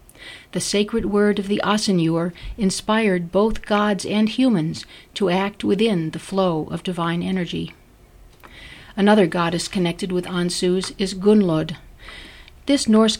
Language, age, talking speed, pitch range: English, 50-69, 125 wpm, 170-210 Hz